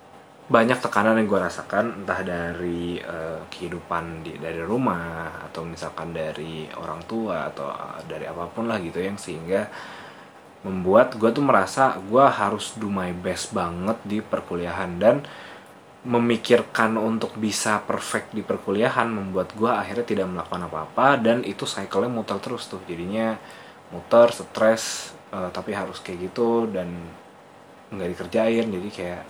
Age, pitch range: 20-39, 85-115 Hz